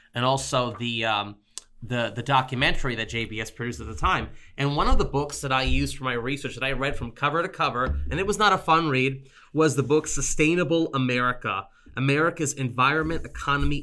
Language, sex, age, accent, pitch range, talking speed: English, male, 30-49, American, 125-150 Hz, 200 wpm